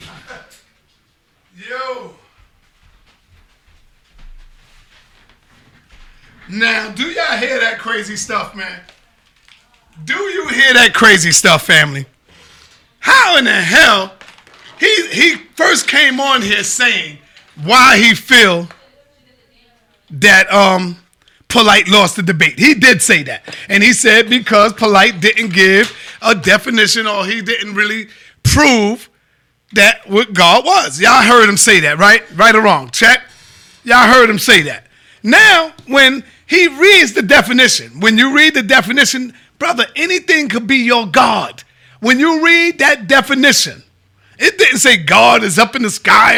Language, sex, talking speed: English, male, 135 wpm